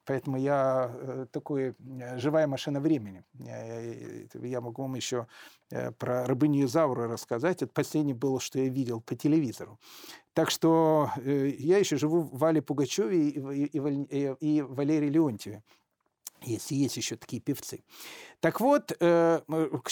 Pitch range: 135-180 Hz